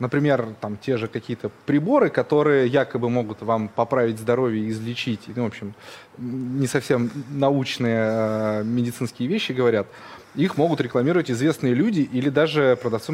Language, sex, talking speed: Russian, male, 140 wpm